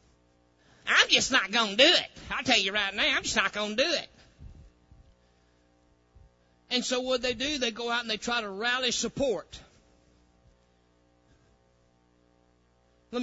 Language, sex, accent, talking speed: English, male, American, 155 wpm